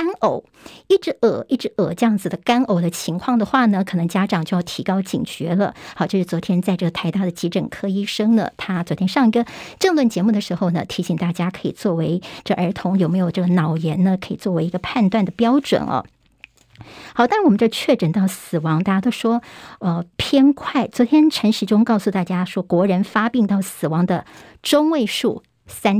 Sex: male